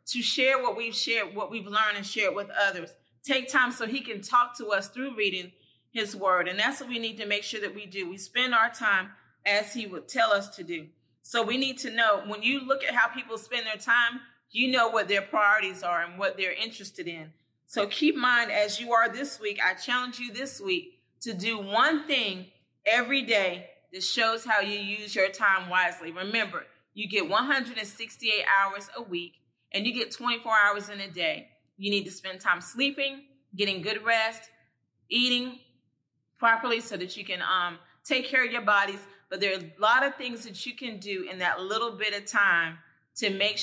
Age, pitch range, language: 30-49, 185-235 Hz, English